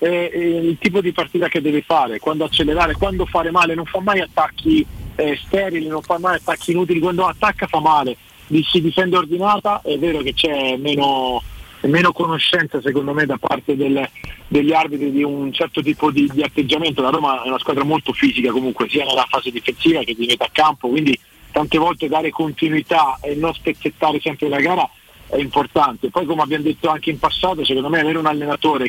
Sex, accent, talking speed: male, native, 195 wpm